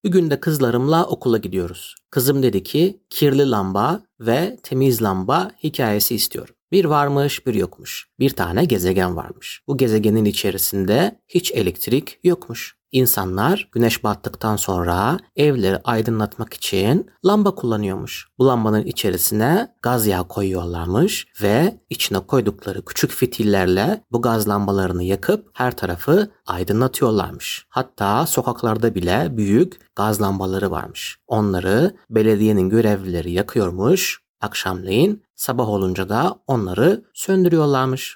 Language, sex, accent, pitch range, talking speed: Turkish, male, native, 100-150 Hz, 115 wpm